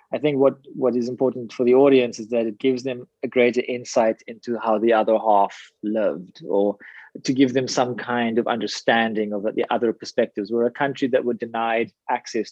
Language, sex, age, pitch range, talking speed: English, male, 20-39, 110-130 Hz, 200 wpm